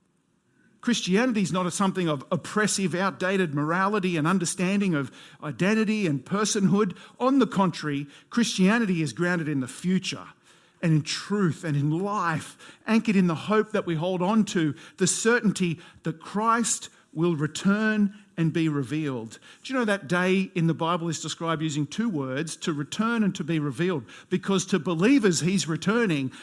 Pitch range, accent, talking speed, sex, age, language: 160-210 Hz, Australian, 160 wpm, male, 50-69, English